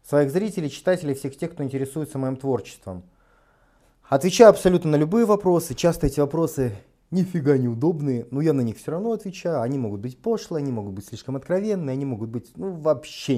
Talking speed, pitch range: 180 wpm, 130-170 Hz